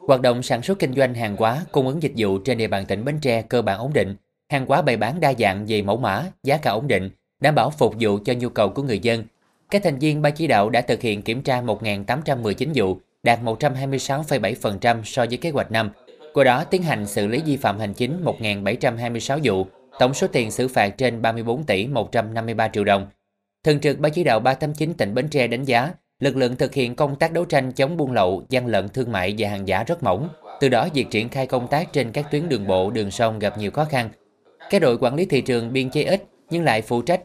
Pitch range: 110-140 Hz